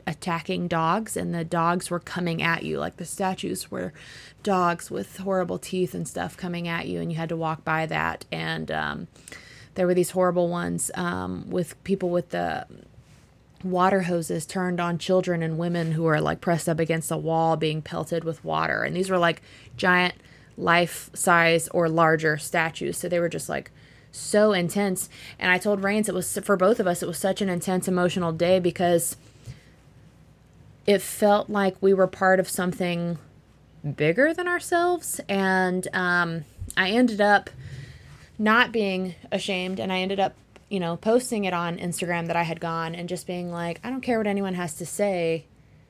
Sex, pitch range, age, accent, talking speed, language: female, 165-185 Hz, 20-39, American, 185 wpm, English